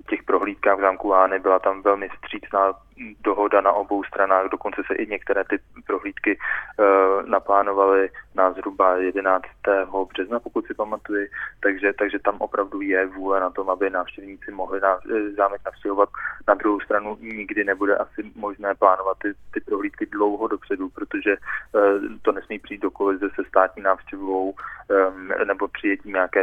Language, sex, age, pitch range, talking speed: Czech, male, 20-39, 95-100 Hz, 155 wpm